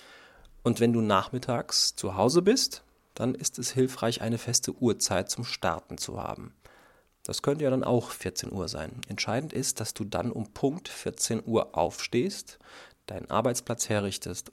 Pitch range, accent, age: 100-125 Hz, German, 40-59